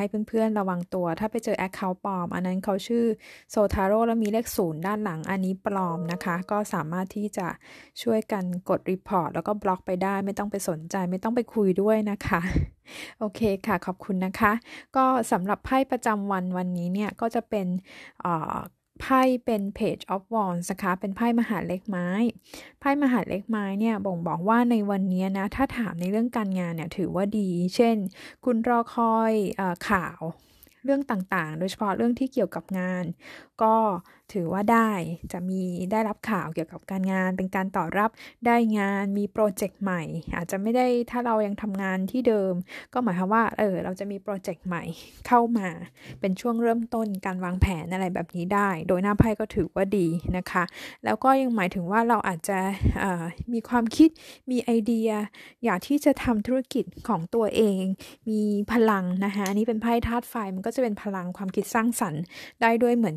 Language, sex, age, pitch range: Thai, female, 20-39, 185-230 Hz